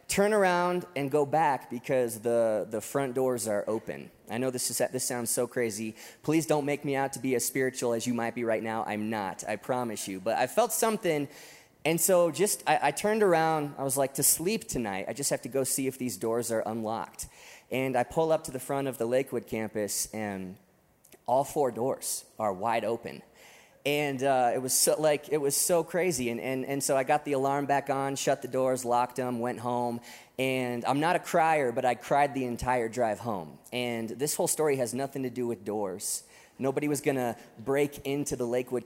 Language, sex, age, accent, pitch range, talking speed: English, male, 20-39, American, 115-145 Hz, 215 wpm